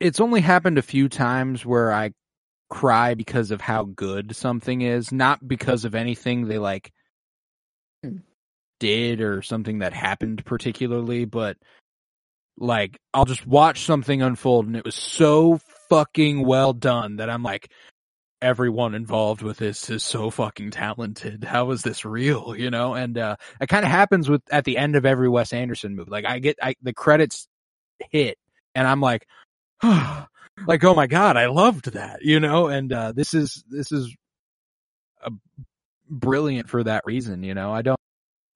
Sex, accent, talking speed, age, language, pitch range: male, American, 165 wpm, 20-39, English, 110-145 Hz